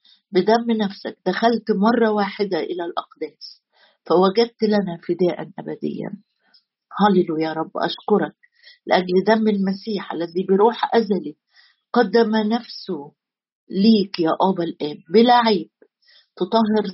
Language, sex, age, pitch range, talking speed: Arabic, female, 50-69, 175-225 Hz, 105 wpm